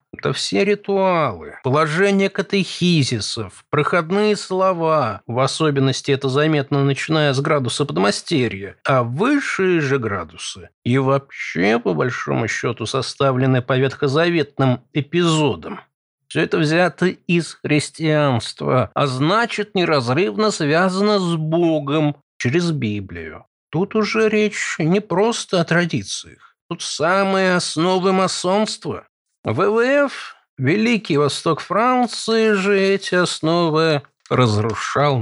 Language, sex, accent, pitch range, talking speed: Russian, male, native, 125-175 Hz, 100 wpm